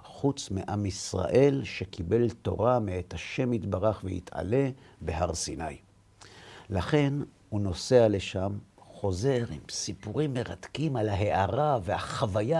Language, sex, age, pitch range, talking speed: Hebrew, male, 50-69, 95-125 Hz, 105 wpm